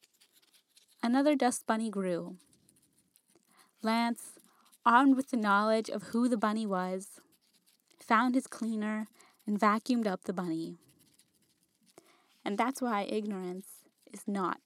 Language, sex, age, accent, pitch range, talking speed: English, female, 20-39, American, 195-245 Hz, 115 wpm